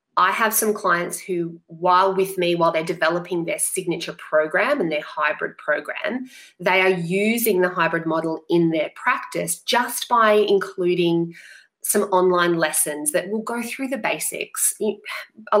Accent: Australian